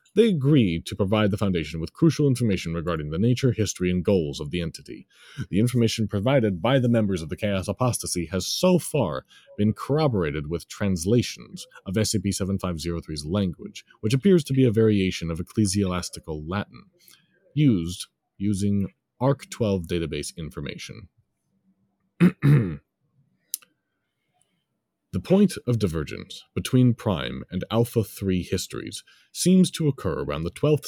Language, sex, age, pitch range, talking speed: English, male, 30-49, 90-135 Hz, 135 wpm